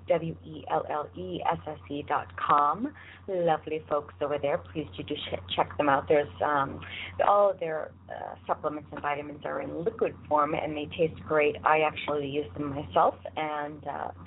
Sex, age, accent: female, 40-59, American